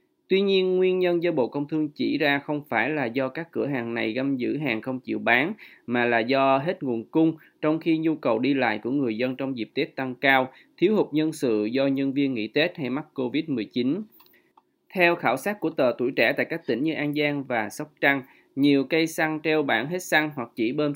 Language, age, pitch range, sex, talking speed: Vietnamese, 20-39, 130-160 Hz, male, 235 wpm